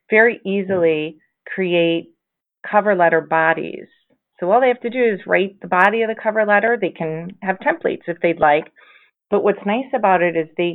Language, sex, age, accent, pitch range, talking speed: English, female, 30-49, American, 165-205 Hz, 190 wpm